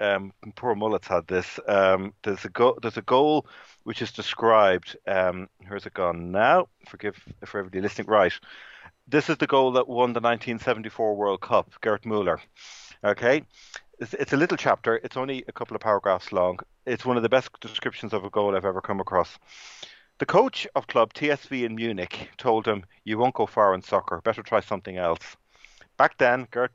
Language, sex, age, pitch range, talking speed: English, male, 40-59, 95-125 Hz, 190 wpm